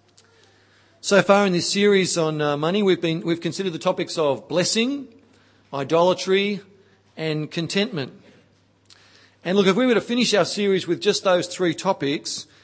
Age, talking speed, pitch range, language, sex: 40-59, 150 wpm, 135-185 Hz, English, male